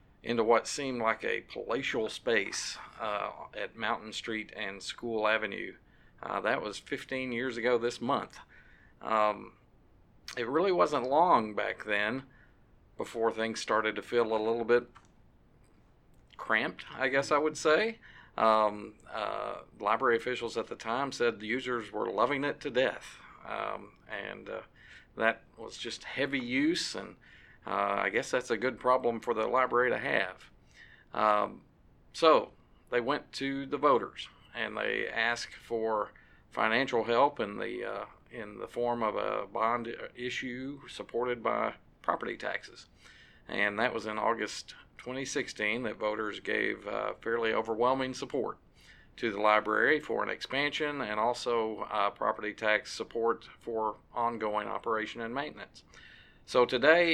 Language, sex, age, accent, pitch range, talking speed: English, male, 50-69, American, 110-130 Hz, 145 wpm